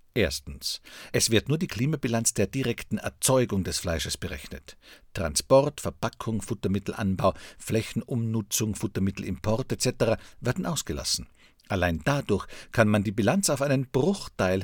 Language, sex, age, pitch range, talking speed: German, male, 50-69, 95-125 Hz, 120 wpm